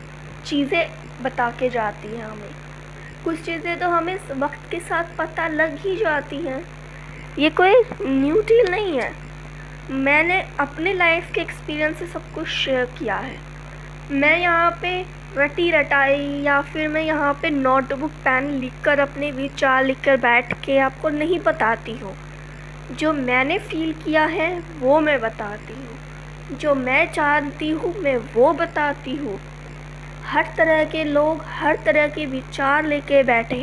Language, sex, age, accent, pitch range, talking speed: Hindi, female, 20-39, native, 260-320 Hz, 150 wpm